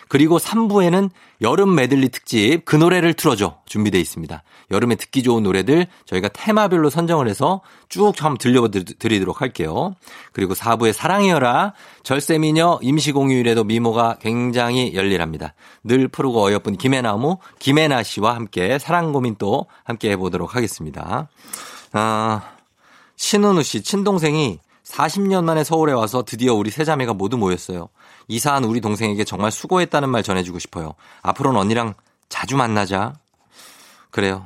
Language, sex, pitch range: Korean, male, 100-150 Hz